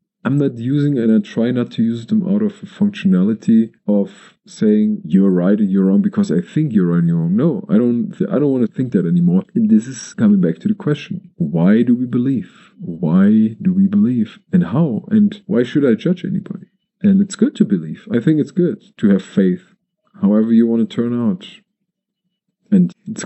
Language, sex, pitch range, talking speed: English, male, 180-210 Hz, 215 wpm